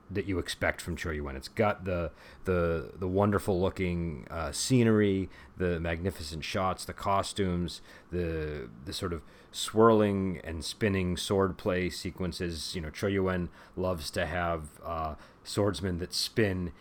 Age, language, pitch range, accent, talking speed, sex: 30-49, English, 80-100 Hz, American, 140 wpm, male